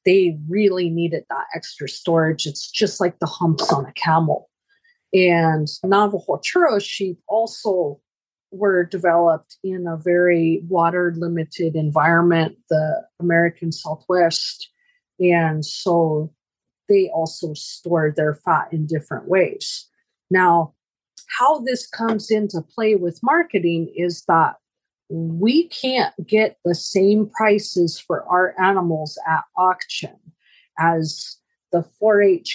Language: English